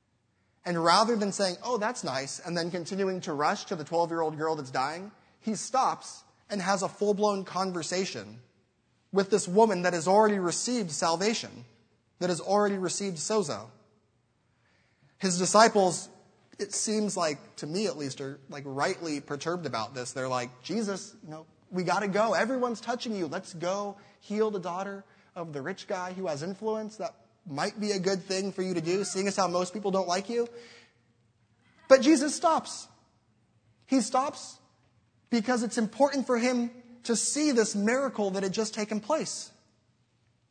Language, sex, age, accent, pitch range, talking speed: English, male, 20-39, American, 130-200 Hz, 165 wpm